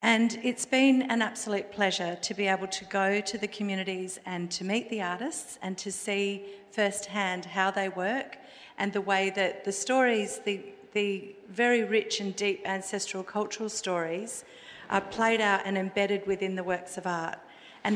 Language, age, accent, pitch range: English, 50-69, Australian, 190-215 Hz